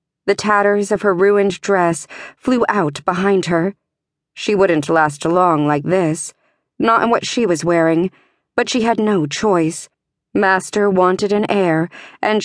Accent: American